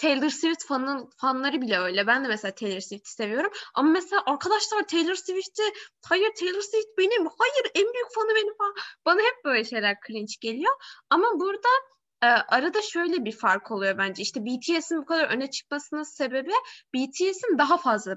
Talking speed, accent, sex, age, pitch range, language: 170 wpm, native, female, 10-29, 240-365 Hz, Turkish